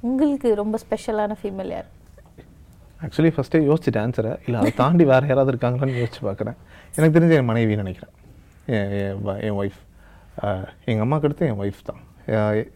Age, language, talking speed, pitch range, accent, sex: 30-49, Tamil, 135 wpm, 110-165 Hz, native, male